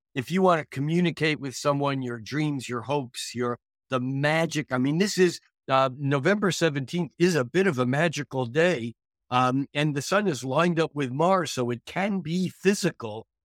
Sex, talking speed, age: male, 190 wpm, 50-69